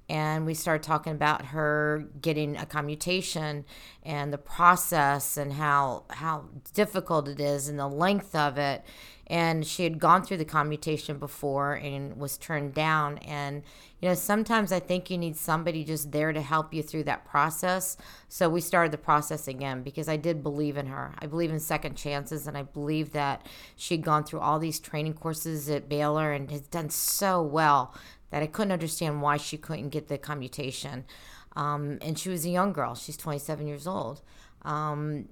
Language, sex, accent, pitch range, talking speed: English, female, American, 145-160 Hz, 185 wpm